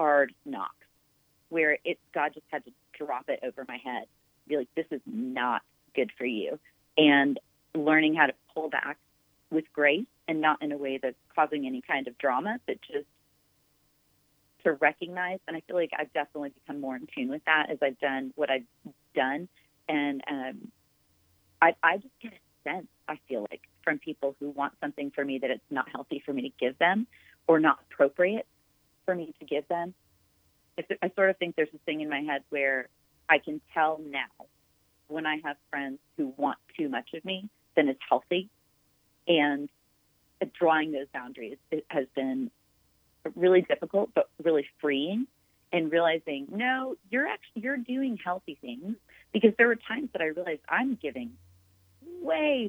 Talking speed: 175 wpm